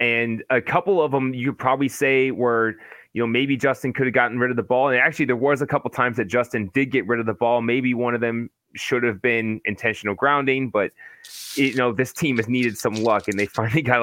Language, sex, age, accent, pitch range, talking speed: English, male, 20-39, American, 115-140 Hz, 250 wpm